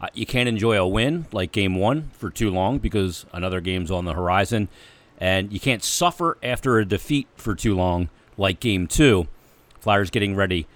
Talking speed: 185 wpm